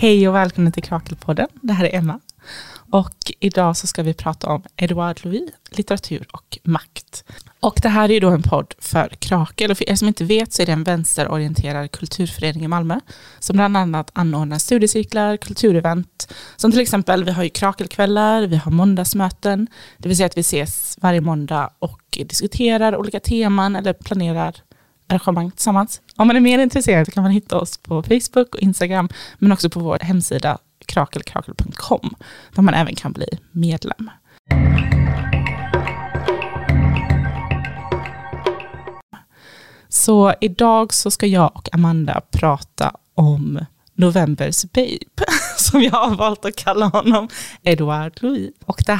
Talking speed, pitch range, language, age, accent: 150 wpm, 160-205 Hz, Swedish, 20-39, native